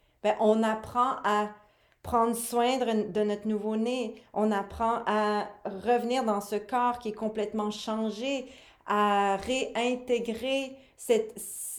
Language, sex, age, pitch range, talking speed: French, female, 40-59, 205-245 Hz, 120 wpm